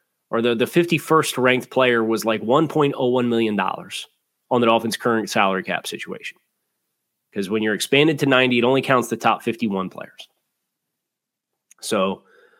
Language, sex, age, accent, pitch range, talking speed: English, male, 30-49, American, 120-145 Hz, 145 wpm